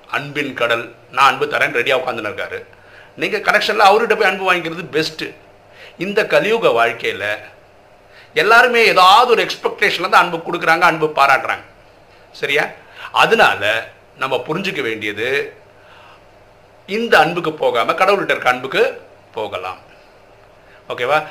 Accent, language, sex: native, Tamil, male